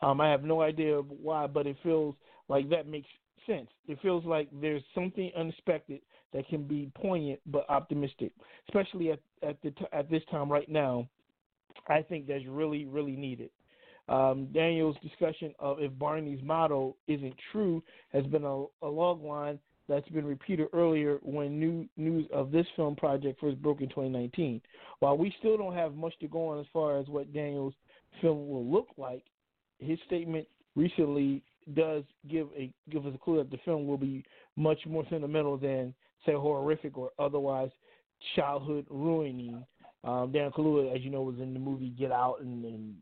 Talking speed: 175 wpm